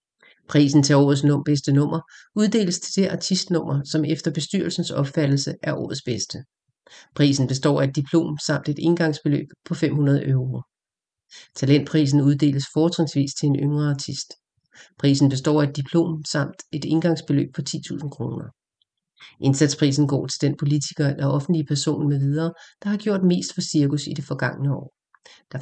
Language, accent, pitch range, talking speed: English, Danish, 140-165 Hz, 155 wpm